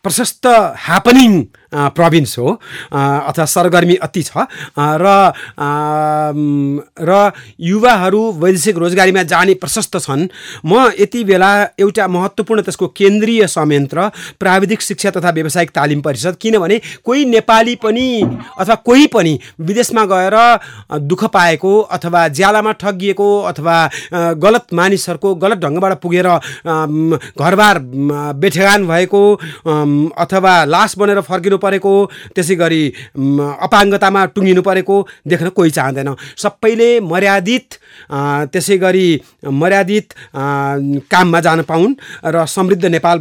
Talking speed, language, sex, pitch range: 100 wpm, English, male, 160-205 Hz